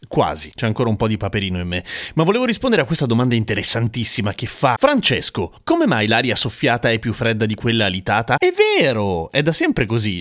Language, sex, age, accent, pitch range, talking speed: Italian, male, 30-49, native, 115-175 Hz, 205 wpm